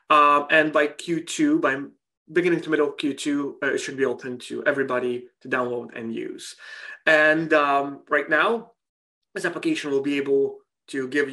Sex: male